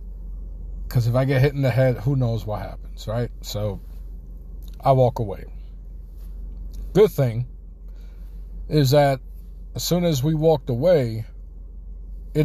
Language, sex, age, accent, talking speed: English, male, 50-69, American, 135 wpm